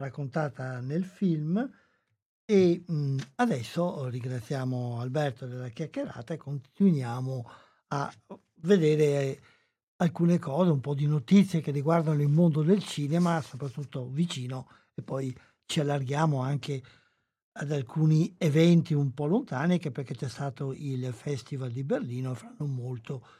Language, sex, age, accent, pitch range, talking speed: Italian, male, 60-79, native, 135-165 Hz, 125 wpm